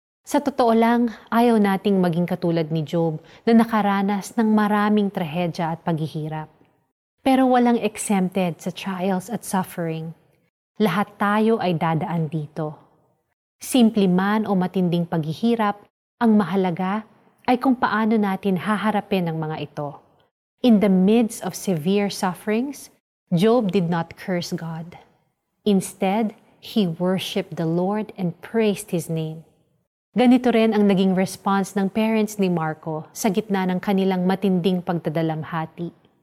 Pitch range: 170-215 Hz